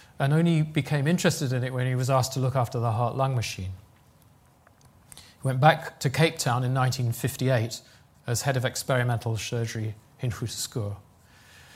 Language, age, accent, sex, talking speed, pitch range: English, 40-59, British, male, 160 wpm, 120-145 Hz